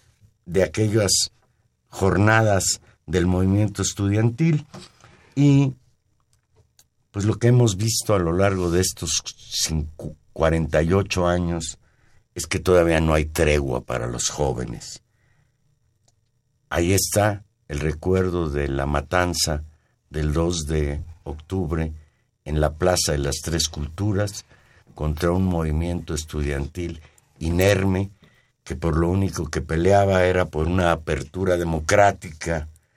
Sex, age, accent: male, 60-79, Mexican